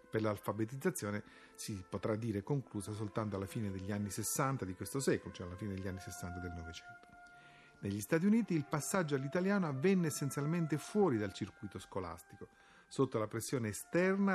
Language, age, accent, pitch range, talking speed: Italian, 40-59, native, 105-160 Hz, 165 wpm